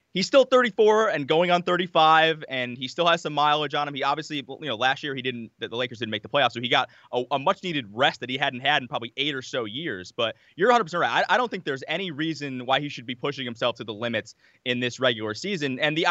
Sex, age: male, 20-39